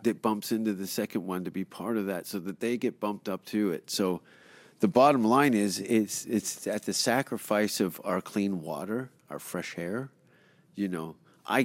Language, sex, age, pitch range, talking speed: English, male, 40-59, 95-115 Hz, 200 wpm